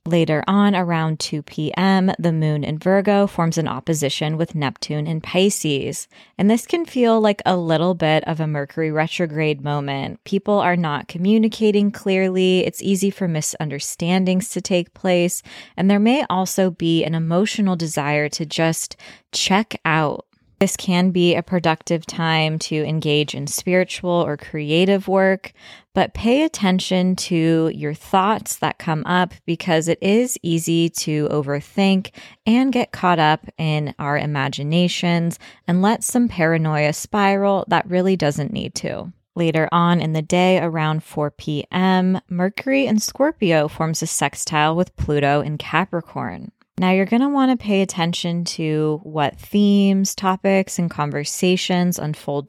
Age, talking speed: 20-39, 145 wpm